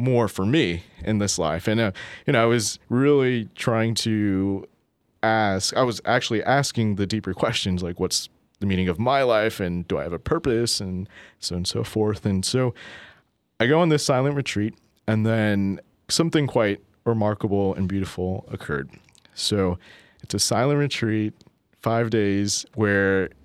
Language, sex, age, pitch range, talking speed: English, male, 30-49, 95-115 Hz, 165 wpm